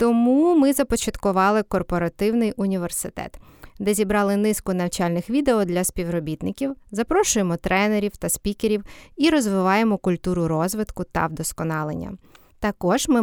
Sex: female